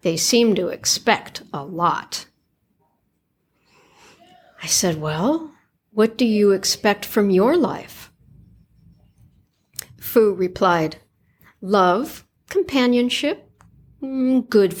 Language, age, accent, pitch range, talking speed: English, 60-79, American, 175-275 Hz, 85 wpm